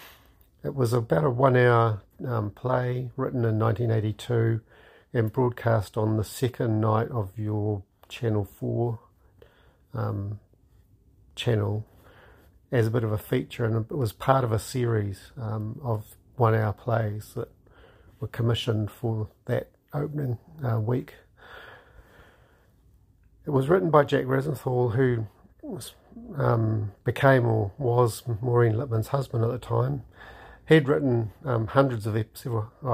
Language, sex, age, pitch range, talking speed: English, male, 50-69, 105-125 Hz, 130 wpm